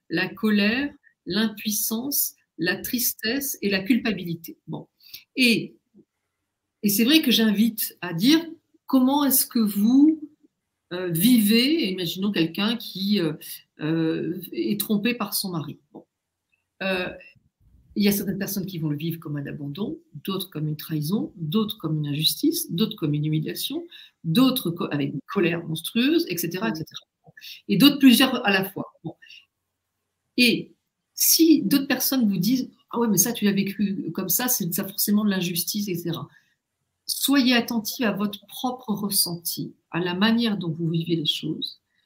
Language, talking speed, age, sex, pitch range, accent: French, 155 wpm, 50-69, female, 170-250 Hz, French